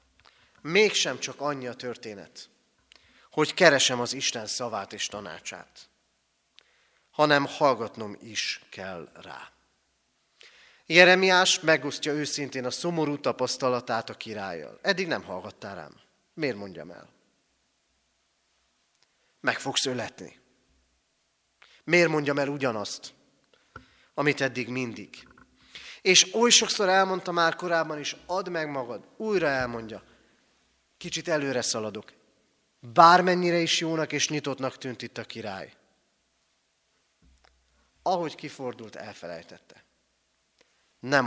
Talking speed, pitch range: 100 wpm, 125-165 Hz